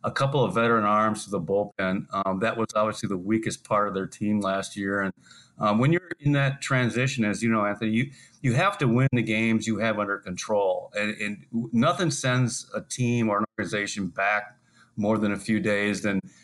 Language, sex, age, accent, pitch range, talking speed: English, male, 40-59, American, 105-120 Hz, 210 wpm